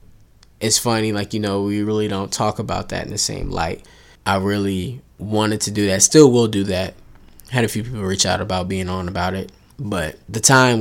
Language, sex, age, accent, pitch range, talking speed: English, male, 20-39, American, 95-110 Hz, 215 wpm